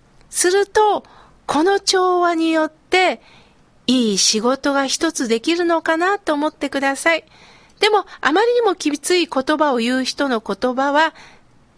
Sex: female